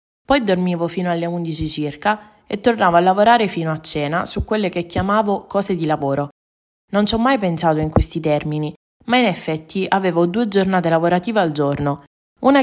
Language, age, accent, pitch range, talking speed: Italian, 20-39, native, 155-195 Hz, 180 wpm